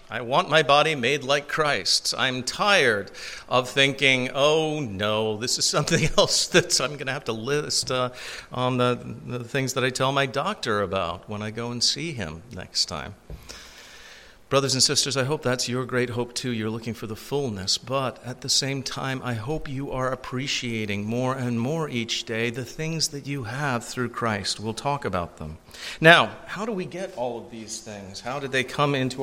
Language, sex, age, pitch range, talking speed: English, male, 50-69, 110-135 Hz, 200 wpm